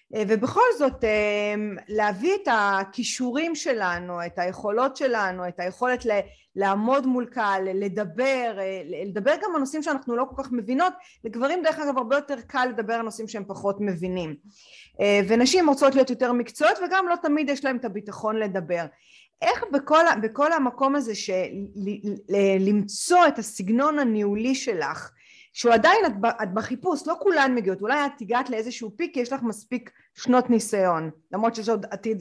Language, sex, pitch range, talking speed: Hebrew, female, 205-280 Hz, 160 wpm